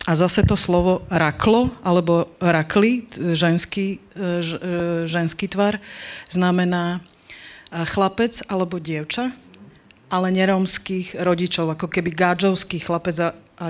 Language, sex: Slovak, female